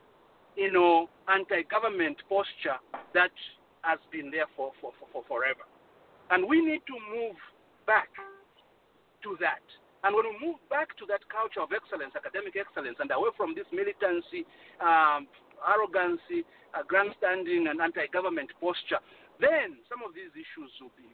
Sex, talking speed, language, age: male, 150 wpm, English, 50-69